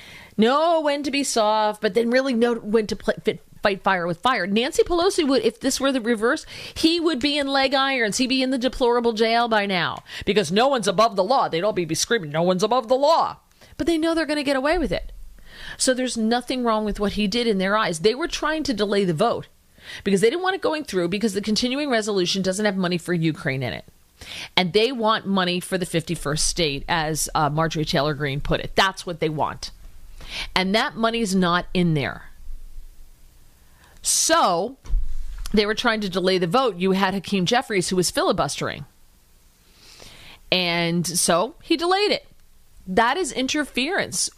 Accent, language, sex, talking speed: American, English, female, 195 wpm